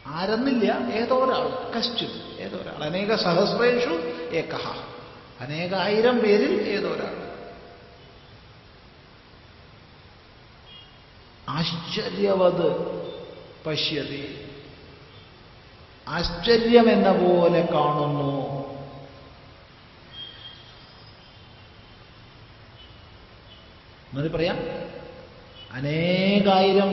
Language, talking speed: Malayalam, 40 wpm